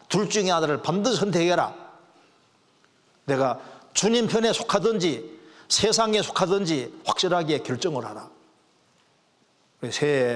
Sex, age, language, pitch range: male, 40-59, Korean, 140-190 Hz